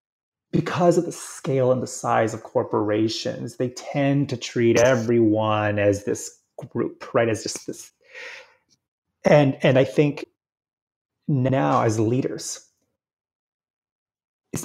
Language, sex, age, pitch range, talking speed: English, male, 30-49, 125-165 Hz, 120 wpm